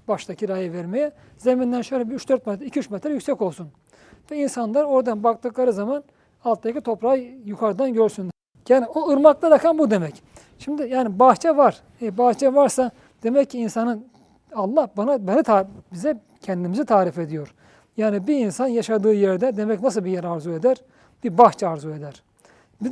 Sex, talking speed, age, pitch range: male, 160 wpm, 40-59, 195-260 Hz